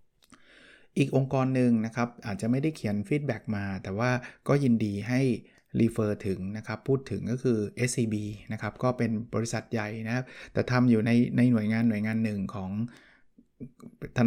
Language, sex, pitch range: Thai, male, 110-130 Hz